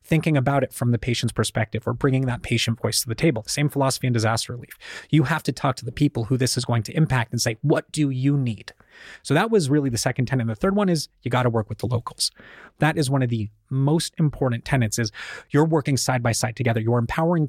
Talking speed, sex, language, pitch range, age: 260 wpm, male, English, 120-150 Hz, 30-49